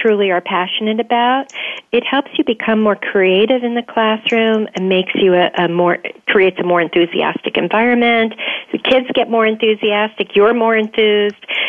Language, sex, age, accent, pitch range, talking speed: English, female, 50-69, American, 185-225 Hz, 165 wpm